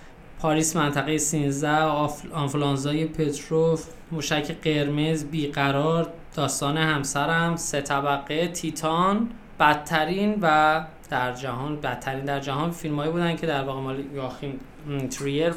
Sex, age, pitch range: male, 20-39, 135-160 Hz